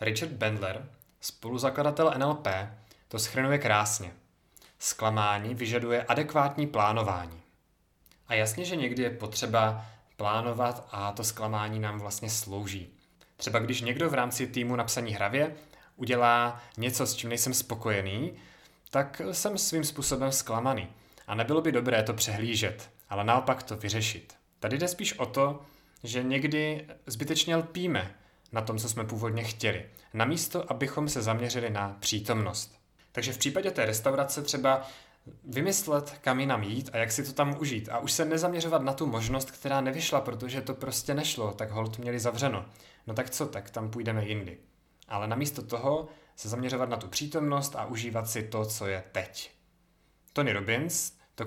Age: 20-39